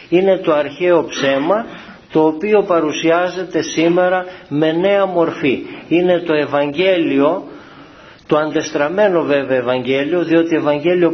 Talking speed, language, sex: 110 wpm, Greek, male